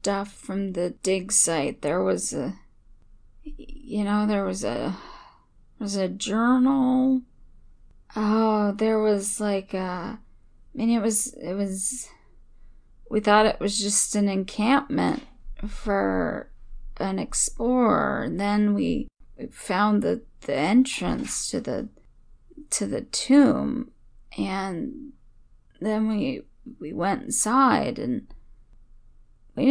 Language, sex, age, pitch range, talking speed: English, female, 10-29, 195-250 Hz, 115 wpm